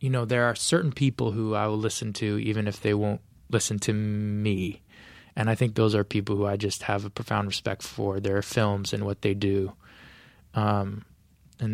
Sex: male